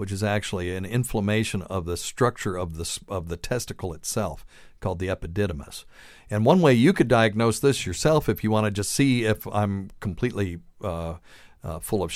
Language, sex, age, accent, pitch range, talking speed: English, male, 50-69, American, 95-120 Hz, 190 wpm